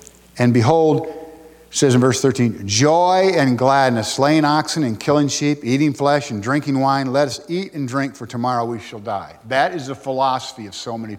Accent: American